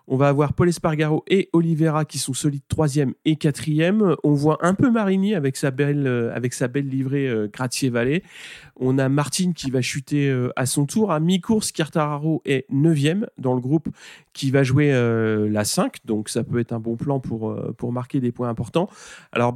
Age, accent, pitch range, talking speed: 30-49, French, 120-155 Hz, 195 wpm